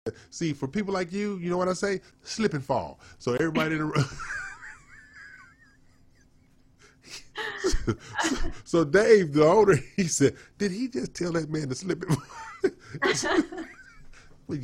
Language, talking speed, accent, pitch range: English, 150 wpm, American, 135-205 Hz